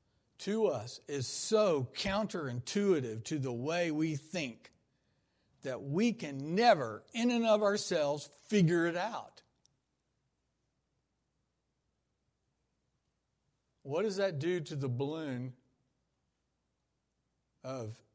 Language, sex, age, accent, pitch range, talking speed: English, male, 60-79, American, 125-170 Hz, 95 wpm